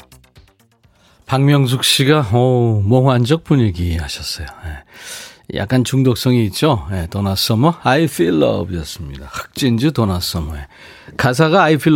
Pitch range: 95-150 Hz